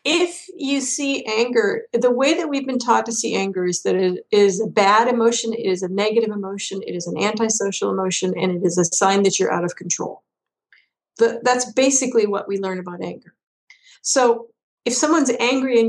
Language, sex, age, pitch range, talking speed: English, female, 50-69, 195-240 Hz, 195 wpm